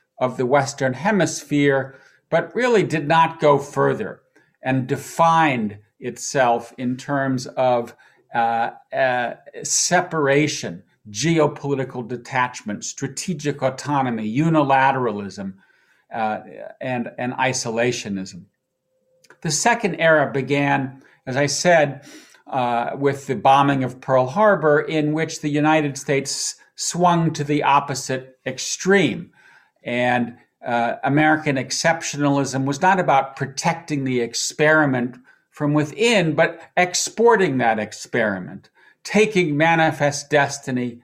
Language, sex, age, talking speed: German, male, 50-69, 105 wpm